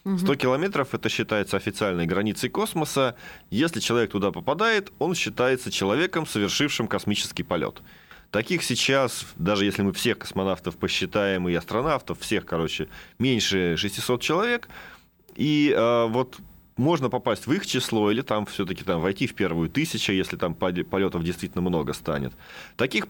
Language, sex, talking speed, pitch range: Russian, male, 140 wpm, 95-125 Hz